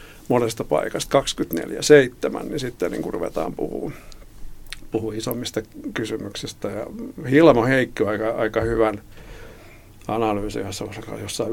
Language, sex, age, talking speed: Finnish, male, 50-69, 105 wpm